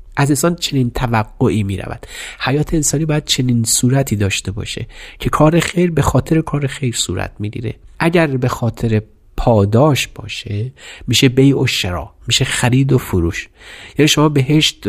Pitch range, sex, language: 110-135 Hz, male, Persian